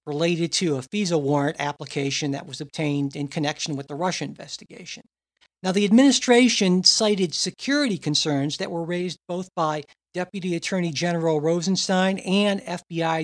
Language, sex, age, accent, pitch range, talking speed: English, male, 60-79, American, 155-195 Hz, 145 wpm